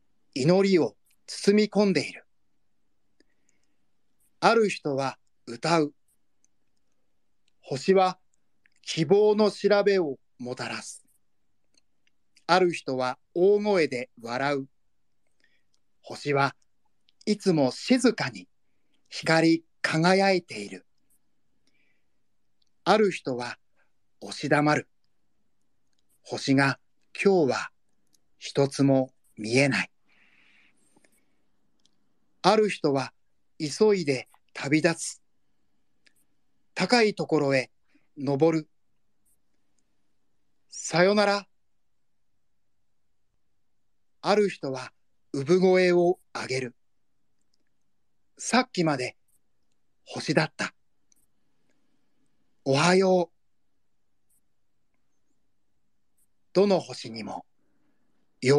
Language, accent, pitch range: Japanese, native, 130-190 Hz